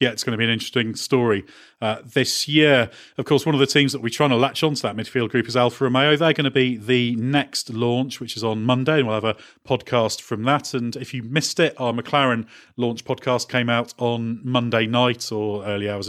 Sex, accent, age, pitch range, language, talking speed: male, British, 40-59, 115-145 Hz, English, 240 wpm